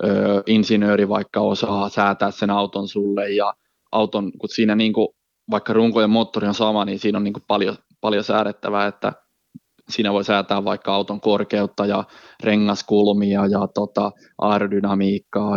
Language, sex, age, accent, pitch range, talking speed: Finnish, male, 20-39, native, 100-105 Hz, 145 wpm